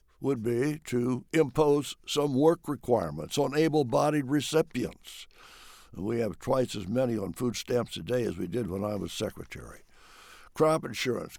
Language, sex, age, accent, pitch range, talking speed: English, male, 60-79, American, 110-145 Hz, 150 wpm